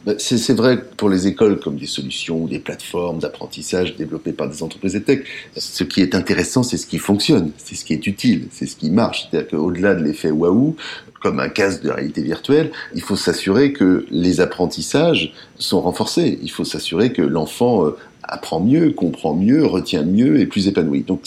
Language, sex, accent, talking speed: French, male, French, 200 wpm